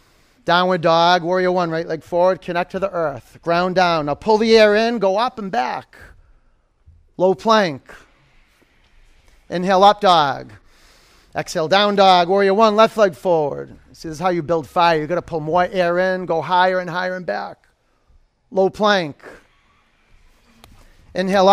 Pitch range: 155-200 Hz